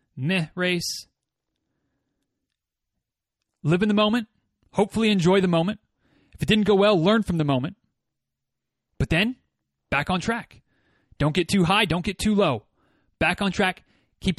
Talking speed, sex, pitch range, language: 150 wpm, male, 165-215 Hz, English